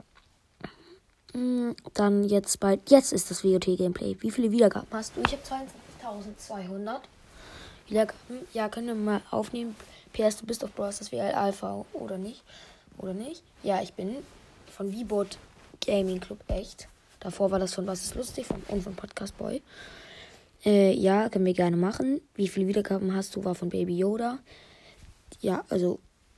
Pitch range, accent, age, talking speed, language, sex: 190-220 Hz, German, 20-39, 160 wpm, German, female